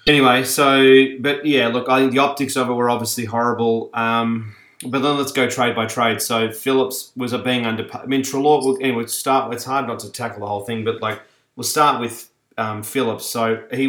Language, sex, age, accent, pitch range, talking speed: English, male, 30-49, Australian, 110-135 Hz, 215 wpm